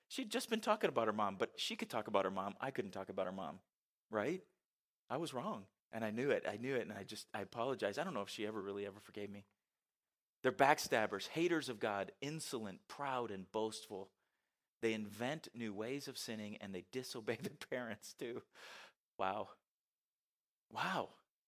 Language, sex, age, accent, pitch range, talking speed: English, male, 40-59, American, 110-170 Hz, 195 wpm